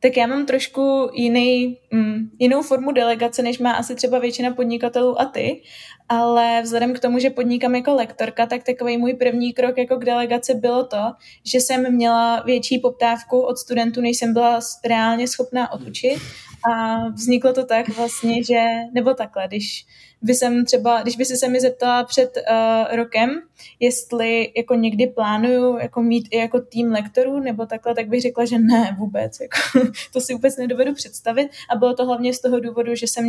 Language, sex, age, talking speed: Czech, female, 20-39, 180 wpm